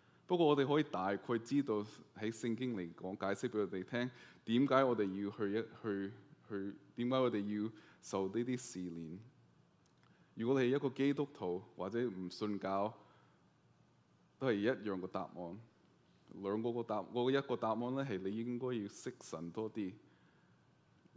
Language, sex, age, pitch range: Chinese, male, 20-39, 100-130 Hz